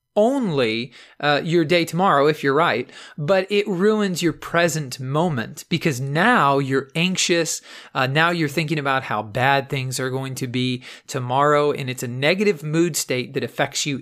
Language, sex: English, male